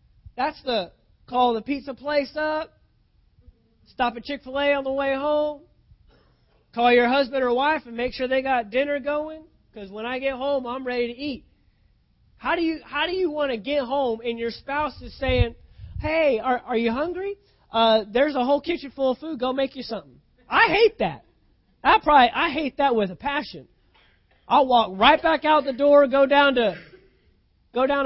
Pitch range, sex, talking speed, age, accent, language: 240-300 Hz, male, 190 wpm, 30-49, American, English